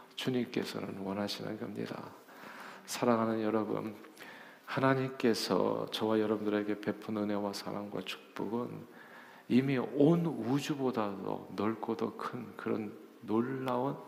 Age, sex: 50-69, male